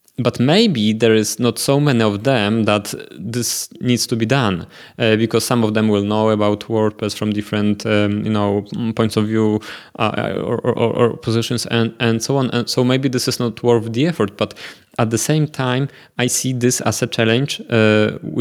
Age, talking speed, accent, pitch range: 20-39, 200 wpm, Polish, 115-130 Hz